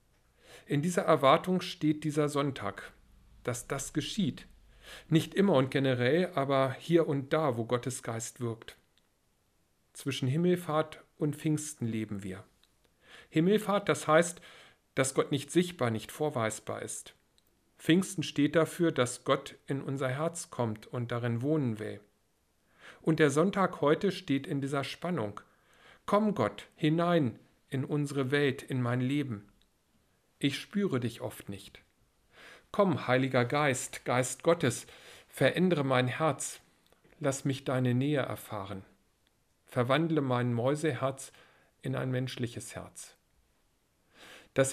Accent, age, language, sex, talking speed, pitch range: German, 50-69, German, male, 125 wpm, 125-160 Hz